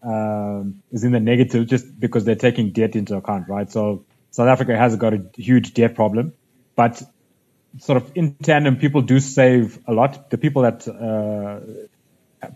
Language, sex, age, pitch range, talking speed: English, male, 20-39, 110-130 Hz, 170 wpm